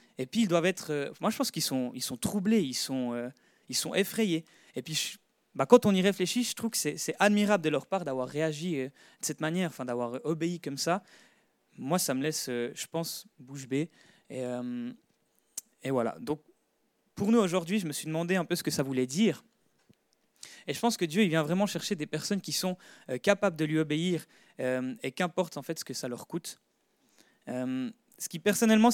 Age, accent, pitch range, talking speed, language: 20-39, French, 135-190 Hz, 220 wpm, French